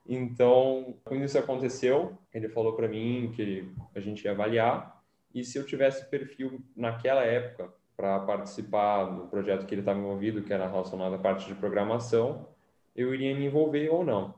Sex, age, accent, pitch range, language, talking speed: male, 10-29, Brazilian, 105-130 Hz, Portuguese, 170 wpm